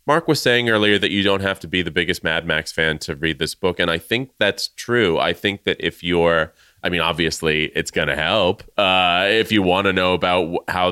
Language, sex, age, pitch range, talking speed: English, male, 30-49, 85-115 Hz, 235 wpm